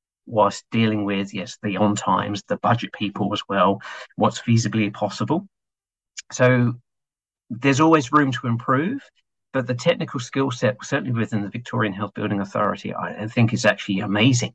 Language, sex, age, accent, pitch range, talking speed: English, male, 50-69, British, 105-125 Hz, 155 wpm